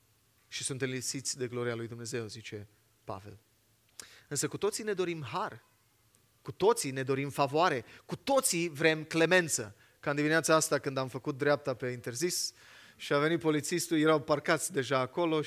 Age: 30-49